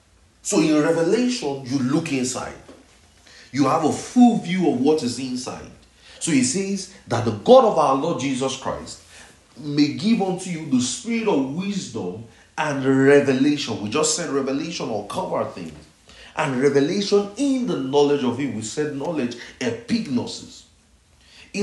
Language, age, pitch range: English, 40-59, 140-210 Hz